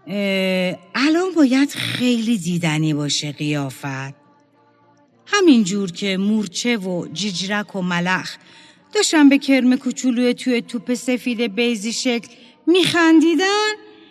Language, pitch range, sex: Persian, 195-305 Hz, female